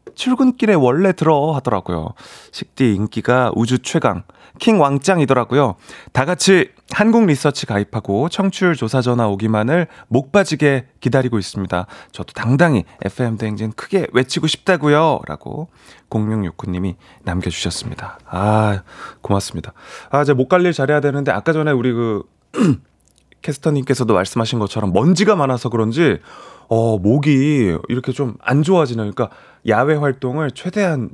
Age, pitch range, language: 30-49, 110-165 Hz, Korean